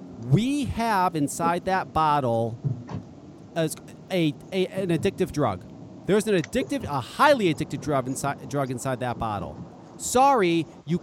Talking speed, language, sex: 130 wpm, English, male